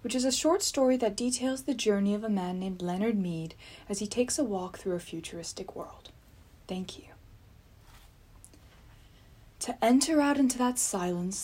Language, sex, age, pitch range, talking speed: English, female, 20-39, 175-250 Hz, 170 wpm